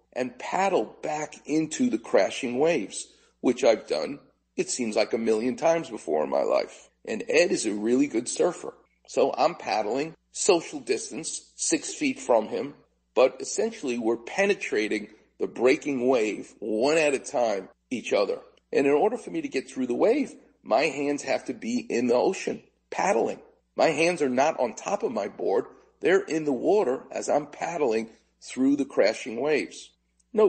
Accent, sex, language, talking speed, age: American, male, English, 175 wpm, 40-59